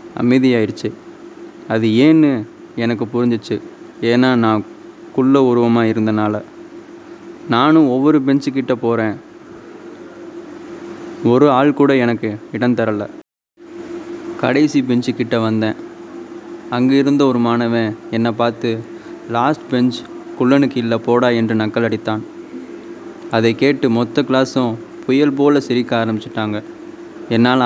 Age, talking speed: 20-39, 100 wpm